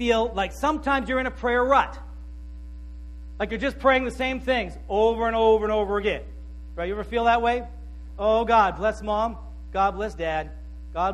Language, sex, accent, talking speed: English, male, American, 190 wpm